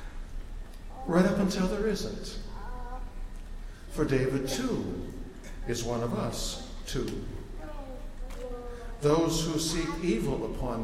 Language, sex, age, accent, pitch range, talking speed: English, male, 60-79, American, 115-160 Hz, 100 wpm